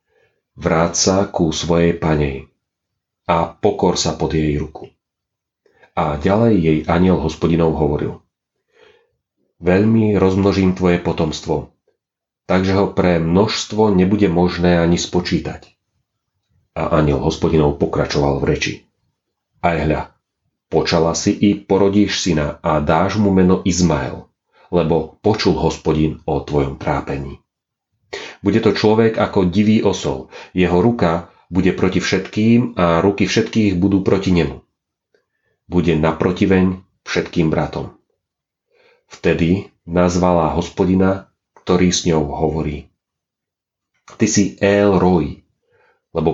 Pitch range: 80-100 Hz